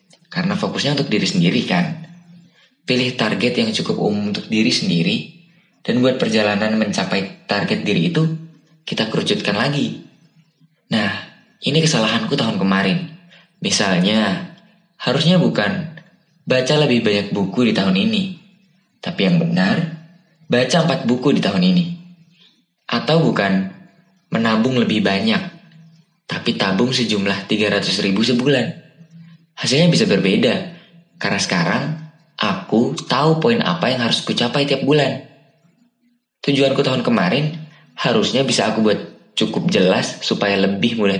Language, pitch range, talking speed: Indonesian, 140-180 Hz, 125 wpm